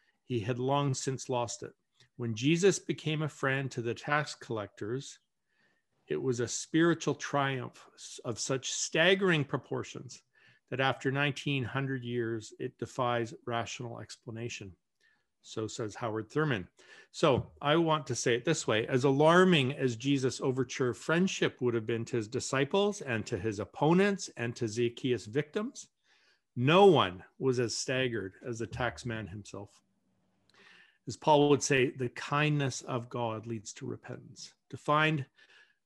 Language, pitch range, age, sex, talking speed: English, 120-150 Hz, 50-69, male, 145 wpm